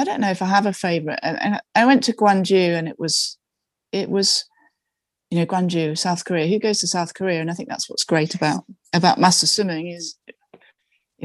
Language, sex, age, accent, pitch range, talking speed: English, female, 30-49, British, 160-195 Hz, 220 wpm